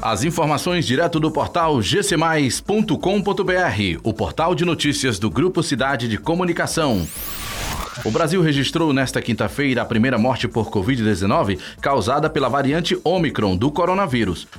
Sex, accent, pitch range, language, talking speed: male, Brazilian, 110-160 Hz, Portuguese, 130 wpm